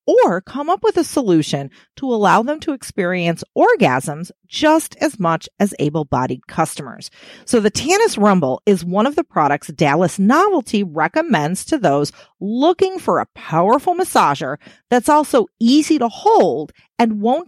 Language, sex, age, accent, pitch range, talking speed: English, female, 40-59, American, 175-270 Hz, 150 wpm